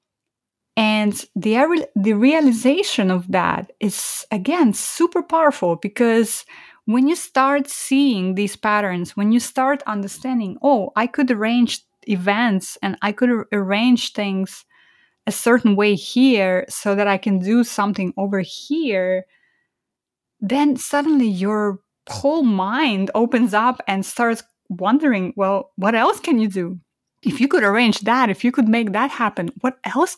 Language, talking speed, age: English, 145 wpm, 20-39